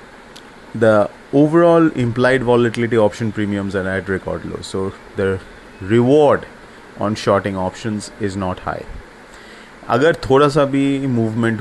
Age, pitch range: 30-49, 100-120 Hz